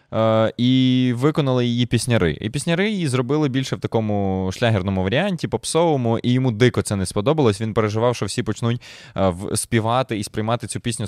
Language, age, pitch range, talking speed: Ukrainian, 20-39, 95-120 Hz, 160 wpm